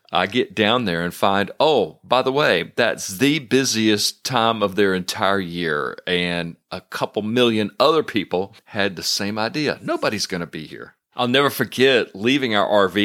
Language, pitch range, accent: English, 95-115 Hz, American